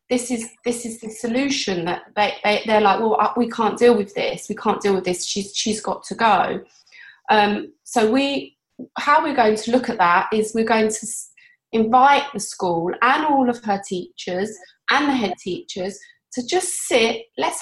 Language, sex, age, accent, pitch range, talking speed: English, female, 20-39, British, 225-280 Hz, 195 wpm